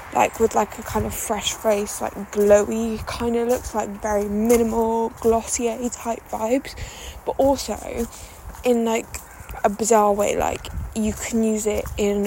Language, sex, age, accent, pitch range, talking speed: English, female, 10-29, British, 205-260 Hz, 155 wpm